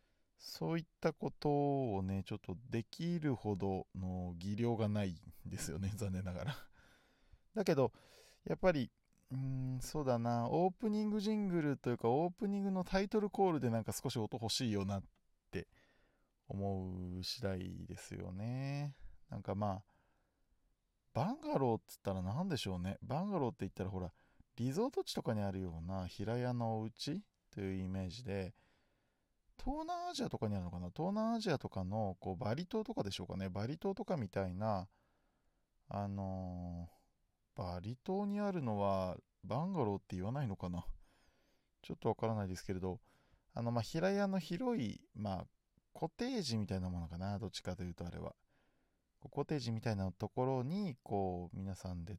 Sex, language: male, Japanese